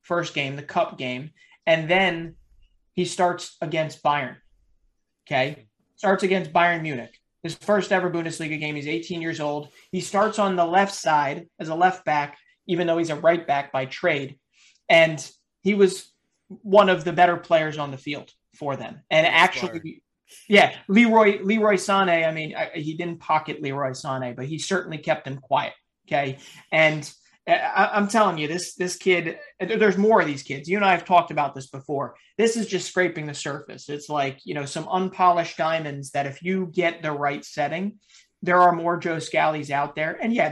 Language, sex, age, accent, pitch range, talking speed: English, male, 30-49, American, 145-185 Hz, 185 wpm